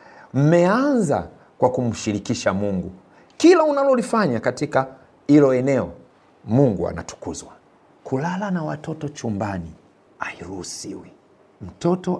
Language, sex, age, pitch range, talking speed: Swahili, male, 50-69, 100-150 Hz, 85 wpm